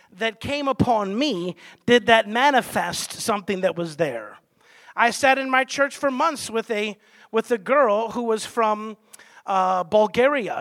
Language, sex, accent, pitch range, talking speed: English, male, American, 215-290 Hz, 160 wpm